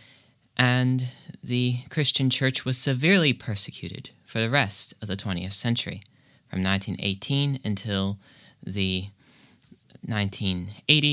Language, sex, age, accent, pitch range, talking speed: English, male, 30-49, American, 110-135 Hz, 85 wpm